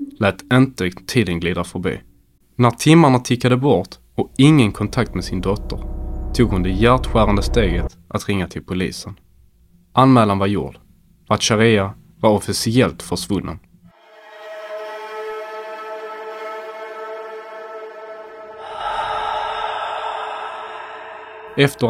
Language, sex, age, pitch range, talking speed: Swedish, male, 20-39, 100-130 Hz, 90 wpm